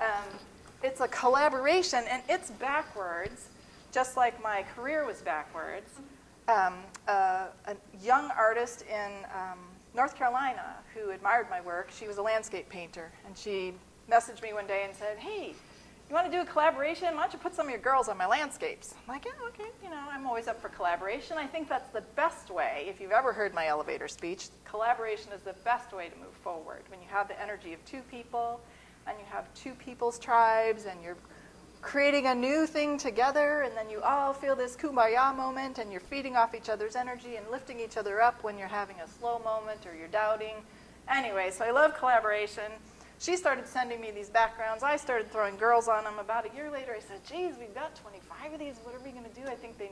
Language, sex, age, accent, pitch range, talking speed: English, female, 40-59, American, 210-275 Hz, 215 wpm